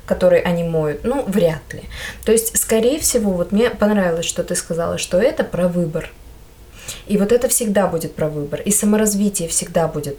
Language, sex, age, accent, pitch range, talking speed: Russian, female, 20-39, native, 180-220 Hz, 185 wpm